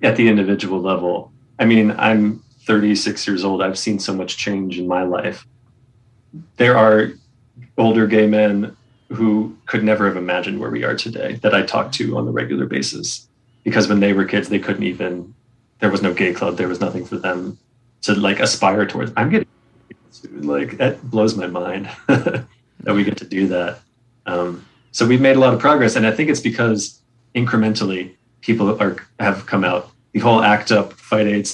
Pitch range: 100-120 Hz